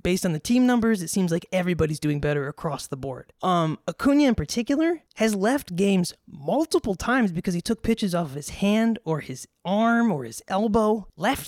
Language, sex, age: English, male, 20-39